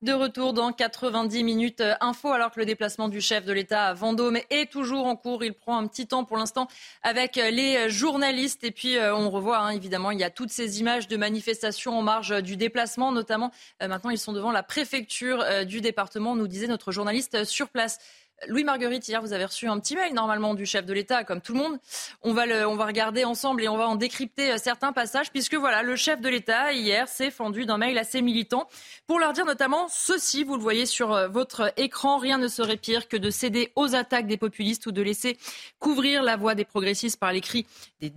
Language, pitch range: French, 215-260 Hz